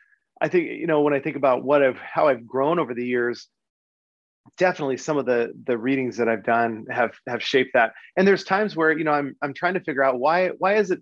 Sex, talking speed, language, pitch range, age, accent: male, 245 wpm, English, 125-170 Hz, 30-49, American